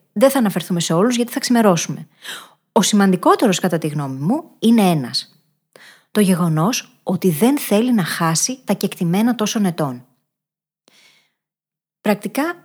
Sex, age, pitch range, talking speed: female, 20-39, 170-245 Hz, 135 wpm